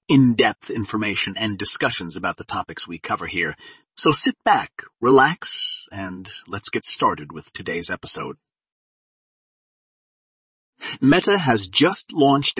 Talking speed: 120 wpm